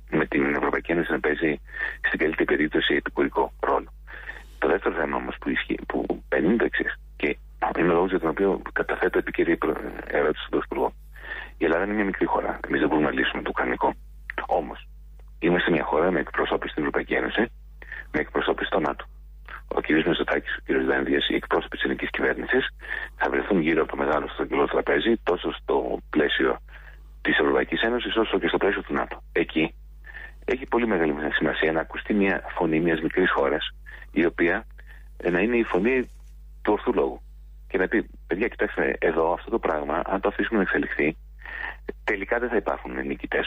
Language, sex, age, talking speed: Greek, male, 40-59, 155 wpm